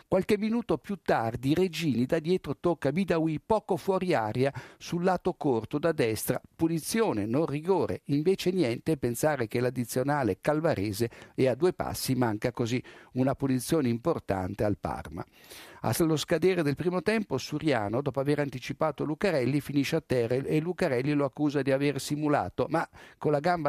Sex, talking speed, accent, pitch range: male, 155 wpm, native, 120-160 Hz